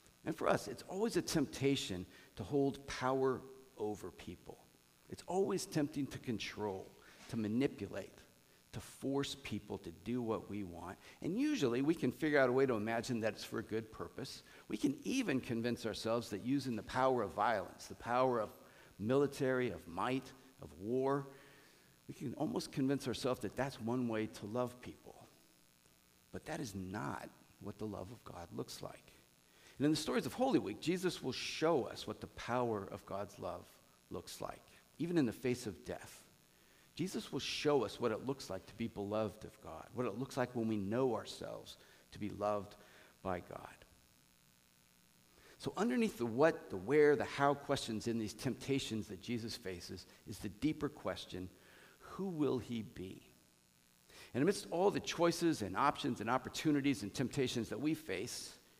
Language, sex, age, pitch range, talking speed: English, male, 50-69, 100-135 Hz, 175 wpm